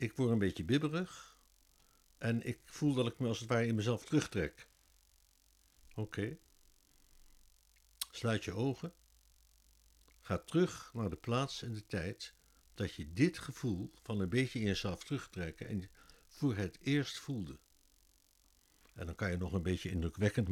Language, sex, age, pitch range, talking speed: Dutch, male, 60-79, 90-125 Hz, 155 wpm